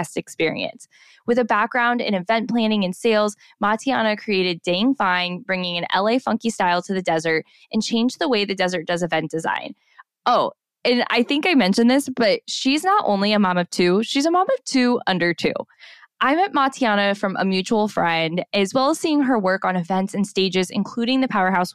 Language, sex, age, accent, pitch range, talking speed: English, female, 10-29, American, 185-240 Hz, 200 wpm